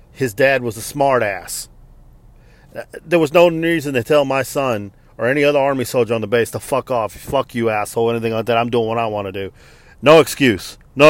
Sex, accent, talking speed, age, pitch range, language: male, American, 220 wpm, 40-59, 115-145 Hz, English